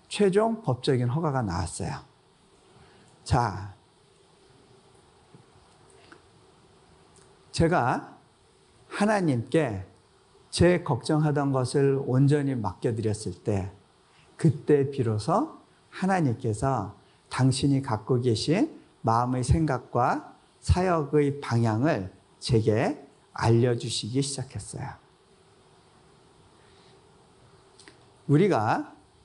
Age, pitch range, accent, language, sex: 50-69, 115-155 Hz, native, Korean, male